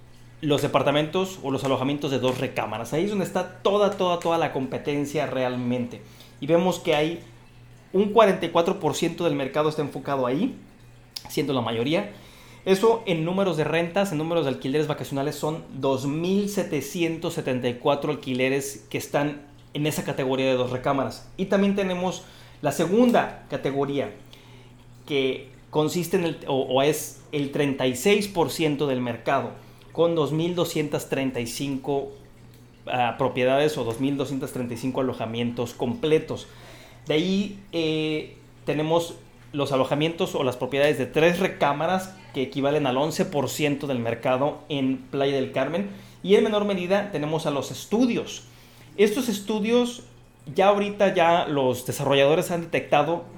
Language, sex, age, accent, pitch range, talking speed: Spanish, male, 30-49, Mexican, 130-170 Hz, 130 wpm